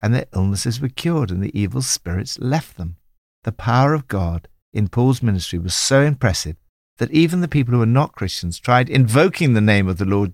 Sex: male